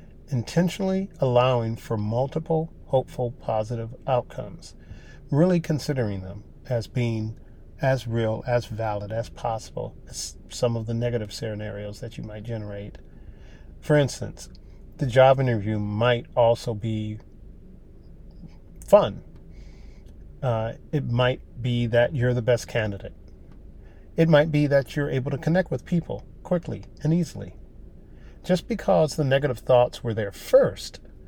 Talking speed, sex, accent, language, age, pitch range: 130 wpm, male, American, English, 40-59, 105-140 Hz